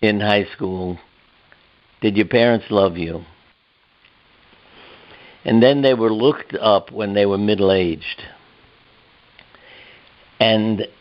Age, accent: 60-79, American